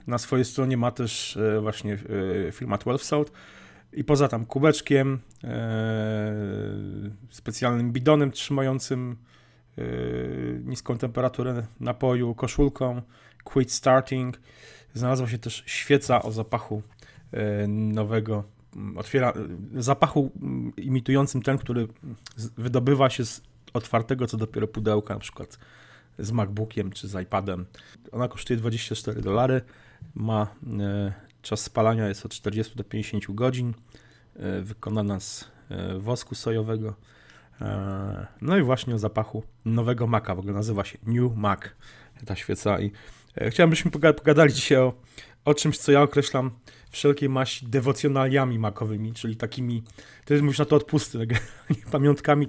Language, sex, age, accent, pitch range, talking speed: Polish, male, 30-49, native, 105-130 Hz, 120 wpm